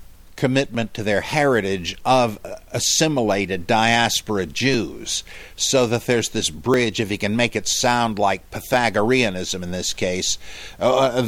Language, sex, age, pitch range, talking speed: English, male, 50-69, 95-125 Hz, 135 wpm